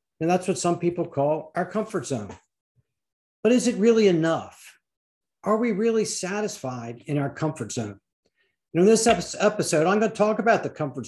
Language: English